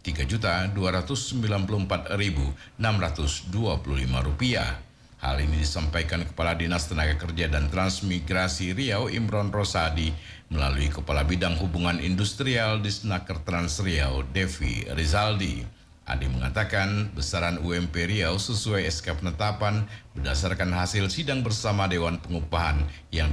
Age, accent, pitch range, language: 50-69, native, 75-105 Hz, Indonesian